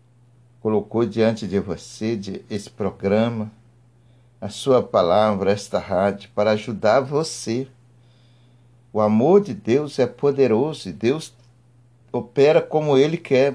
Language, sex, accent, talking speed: Portuguese, male, Brazilian, 120 wpm